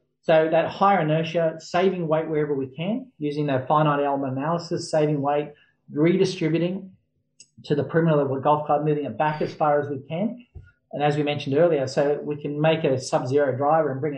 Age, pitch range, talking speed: 40-59, 130-160 Hz, 200 wpm